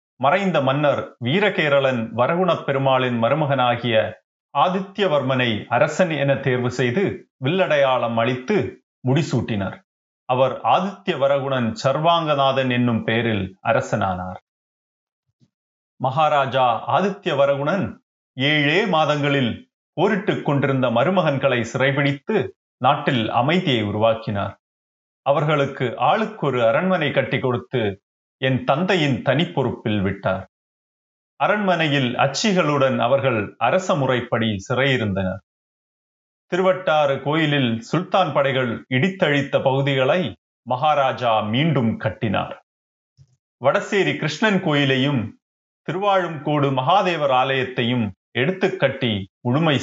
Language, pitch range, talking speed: Tamil, 120-150 Hz, 80 wpm